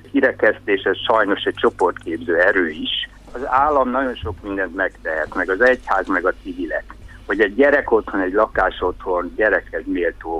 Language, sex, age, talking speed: Hungarian, male, 60-79, 155 wpm